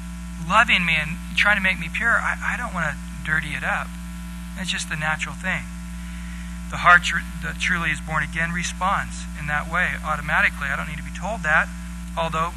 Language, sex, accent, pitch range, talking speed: English, male, American, 150-185 Hz, 200 wpm